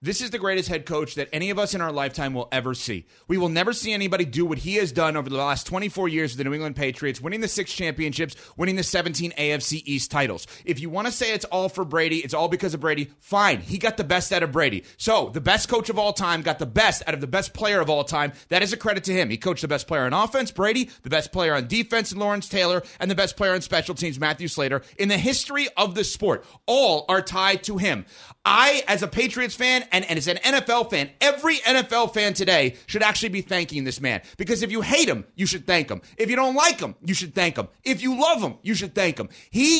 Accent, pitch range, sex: American, 165-235 Hz, male